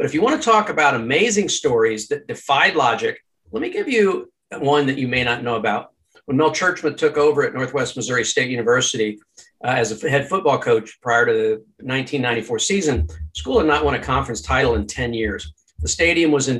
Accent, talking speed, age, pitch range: American, 210 wpm, 50-69, 120-180 Hz